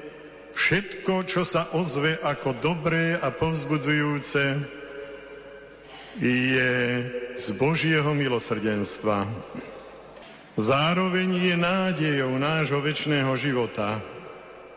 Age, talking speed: 50-69, 75 wpm